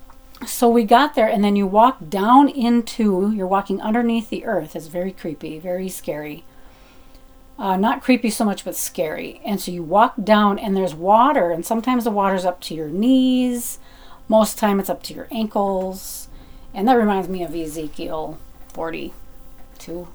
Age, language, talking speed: 40-59, English, 170 wpm